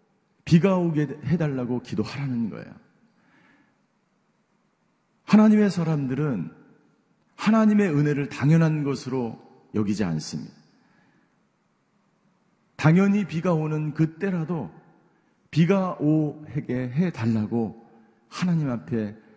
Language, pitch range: Korean, 125-180 Hz